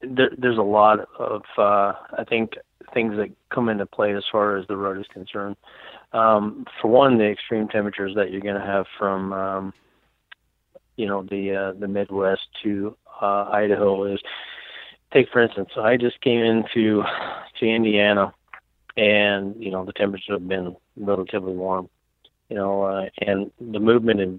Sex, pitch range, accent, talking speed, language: male, 95-105 Hz, American, 165 wpm, English